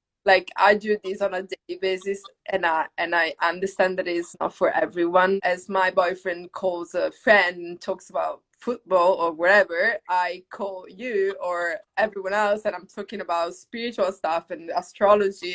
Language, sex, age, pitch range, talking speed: English, female, 20-39, 175-210 Hz, 170 wpm